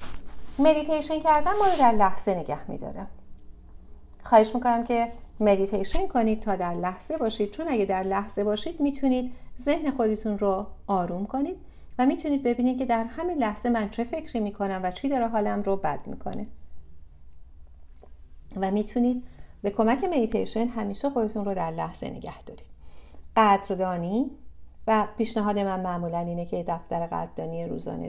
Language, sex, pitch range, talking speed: English, female, 175-245 Hz, 145 wpm